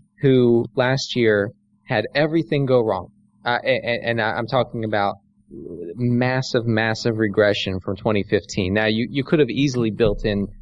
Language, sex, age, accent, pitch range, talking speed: English, male, 20-39, American, 105-130 Hz, 145 wpm